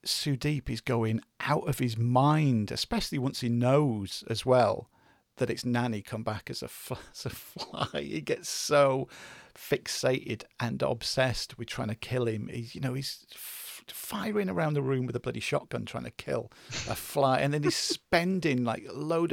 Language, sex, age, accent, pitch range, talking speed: English, male, 40-59, British, 110-145 Hz, 170 wpm